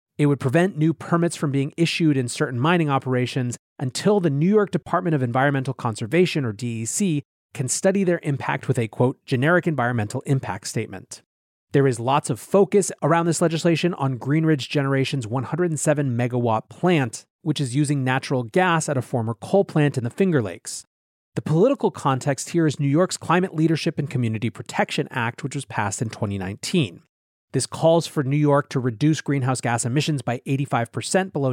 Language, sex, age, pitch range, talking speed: English, male, 30-49, 125-170 Hz, 175 wpm